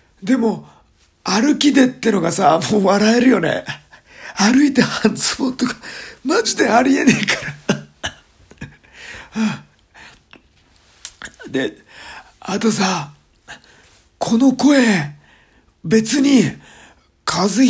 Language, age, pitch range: Japanese, 50-69, 155-245 Hz